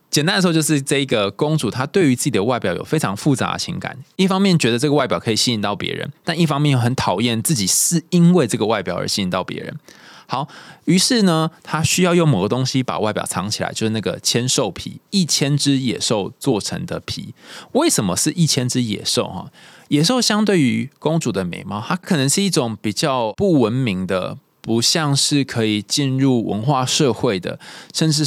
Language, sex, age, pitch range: Chinese, male, 20-39, 115-160 Hz